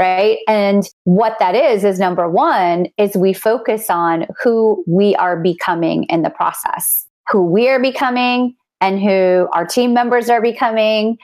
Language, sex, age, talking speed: English, female, 30-49, 160 wpm